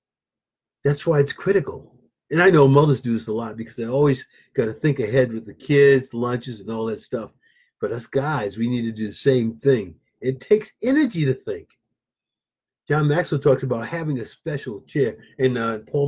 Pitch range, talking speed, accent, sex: 120-160 Hz, 200 wpm, American, male